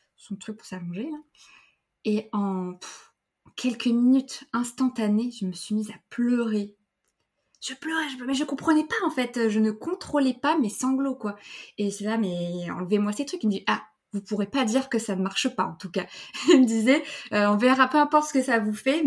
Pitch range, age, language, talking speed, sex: 190-245 Hz, 20-39, French, 220 wpm, female